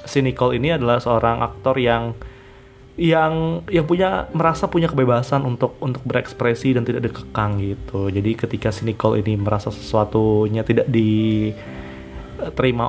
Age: 20-39